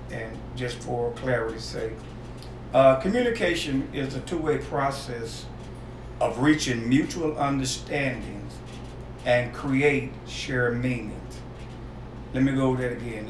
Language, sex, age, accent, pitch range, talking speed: English, male, 50-69, American, 120-140 Hz, 115 wpm